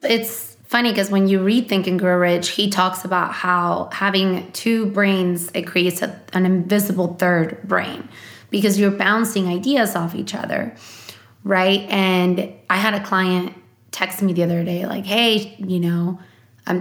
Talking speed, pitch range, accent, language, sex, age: 170 wpm, 170-200 Hz, American, English, female, 20-39